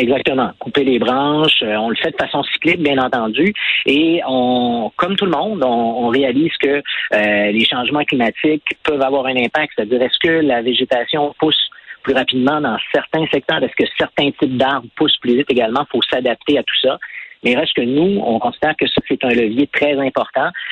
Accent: Canadian